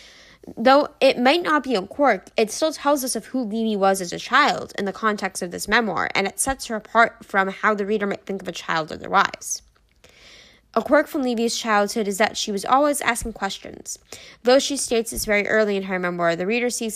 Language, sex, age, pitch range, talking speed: English, female, 10-29, 195-235 Hz, 225 wpm